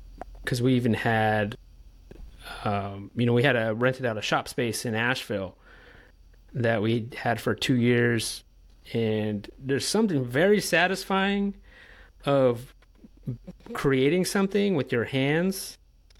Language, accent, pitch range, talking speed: English, American, 110-140 Hz, 125 wpm